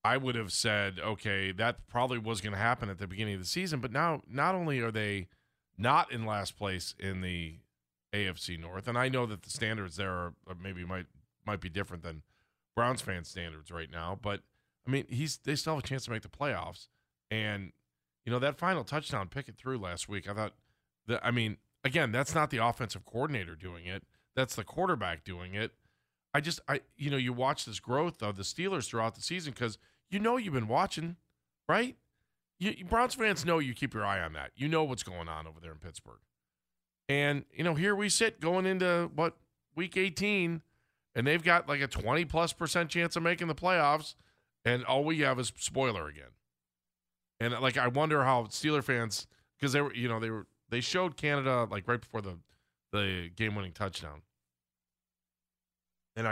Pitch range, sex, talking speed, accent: 95-145 Hz, male, 205 wpm, American